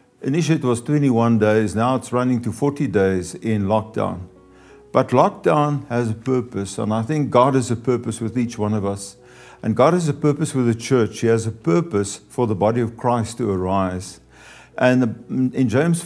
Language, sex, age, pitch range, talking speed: English, male, 50-69, 110-135 Hz, 195 wpm